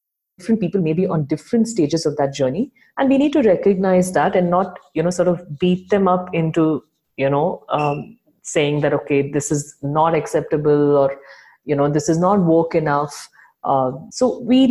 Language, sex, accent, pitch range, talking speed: English, female, Indian, 155-205 Hz, 190 wpm